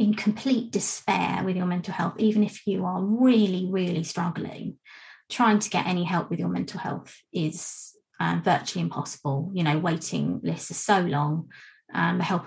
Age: 20-39